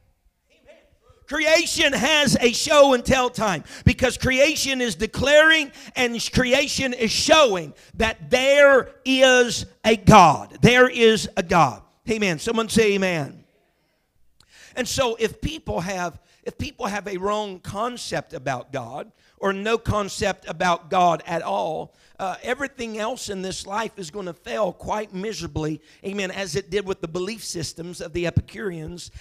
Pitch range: 180-255 Hz